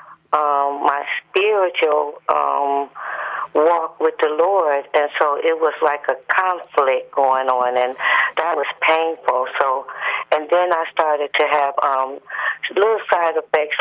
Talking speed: 140 wpm